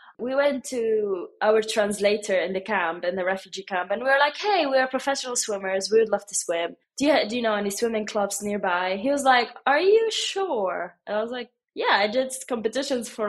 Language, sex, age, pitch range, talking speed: English, female, 20-39, 195-250 Hz, 225 wpm